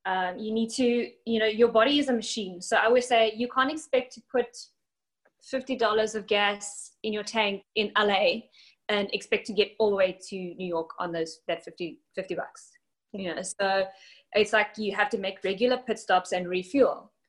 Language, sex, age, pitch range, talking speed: English, female, 20-39, 190-225 Hz, 200 wpm